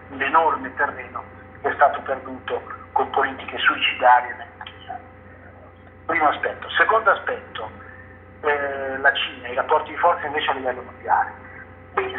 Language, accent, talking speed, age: Italian, native, 130 wpm, 50-69